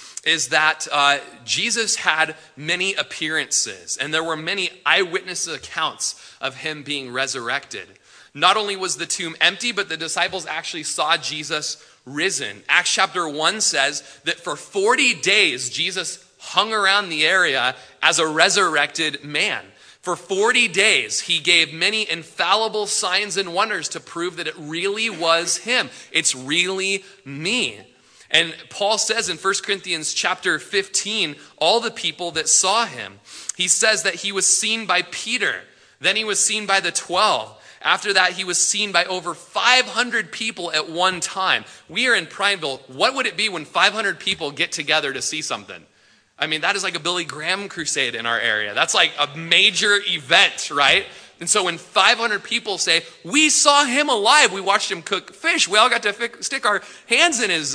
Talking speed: 170 wpm